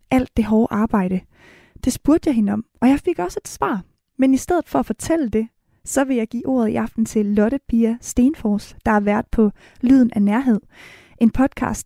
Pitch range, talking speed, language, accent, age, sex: 220-270 Hz, 215 wpm, Danish, native, 20-39, female